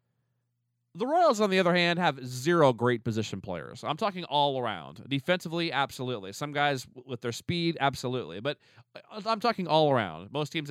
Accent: American